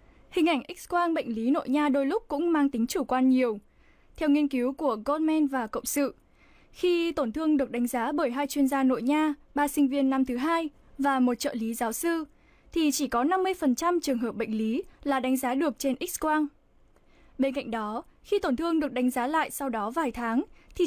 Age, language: 10-29, Vietnamese